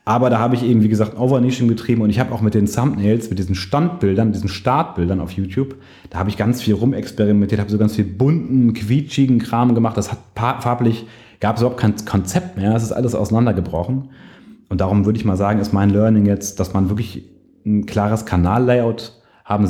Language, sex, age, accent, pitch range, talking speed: German, male, 30-49, German, 100-120 Hz, 205 wpm